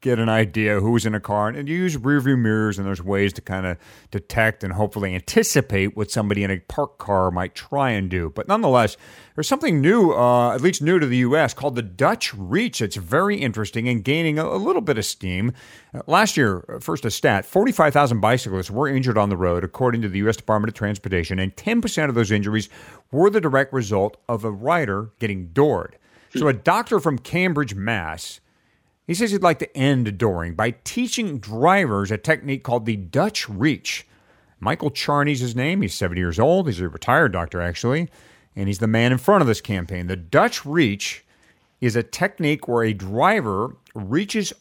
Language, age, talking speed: English, 40-59, 200 wpm